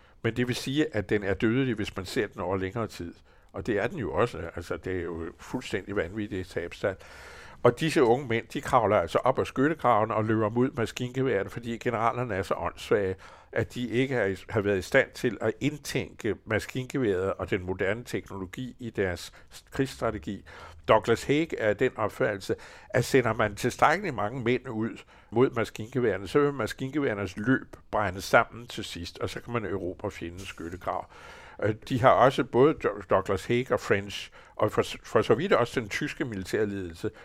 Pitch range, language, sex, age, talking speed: 100-130 Hz, Danish, male, 60-79, 180 wpm